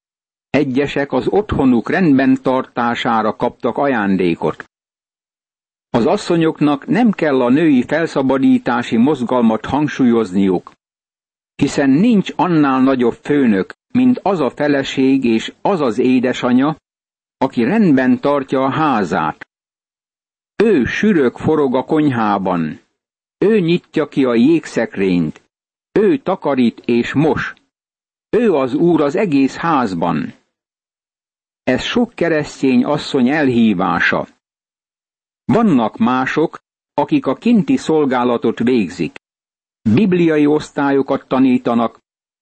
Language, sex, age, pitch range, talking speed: Hungarian, male, 60-79, 130-155 Hz, 100 wpm